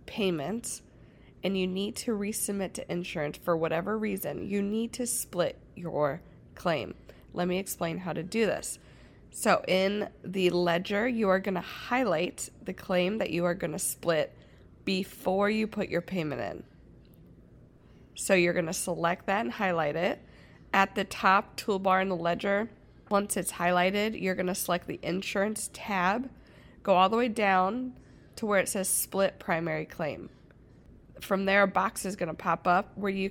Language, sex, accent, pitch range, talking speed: English, female, American, 175-210 Hz, 170 wpm